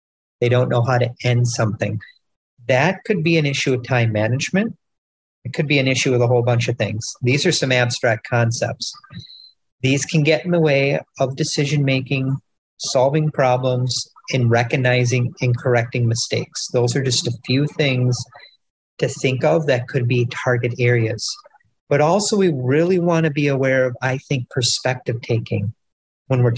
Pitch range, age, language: 120-145 Hz, 40-59, English